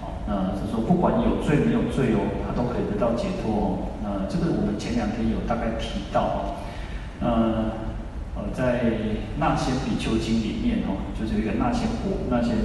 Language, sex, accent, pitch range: Chinese, male, native, 95-125 Hz